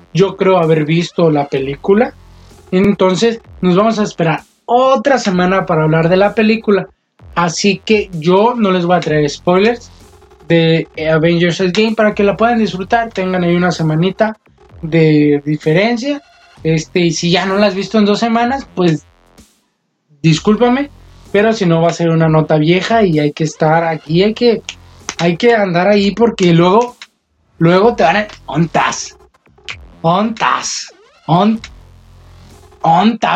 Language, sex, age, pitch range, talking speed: Spanish, male, 20-39, 165-225 Hz, 150 wpm